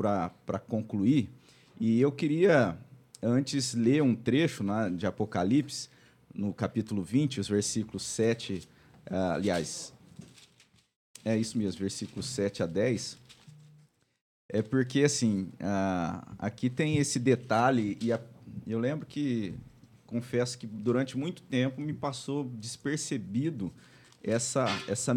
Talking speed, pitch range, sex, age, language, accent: 120 wpm, 110-130 Hz, male, 50-69, Portuguese, Brazilian